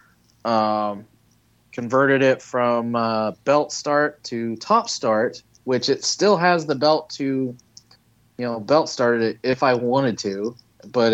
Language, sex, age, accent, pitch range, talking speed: English, male, 30-49, American, 105-120 Hz, 145 wpm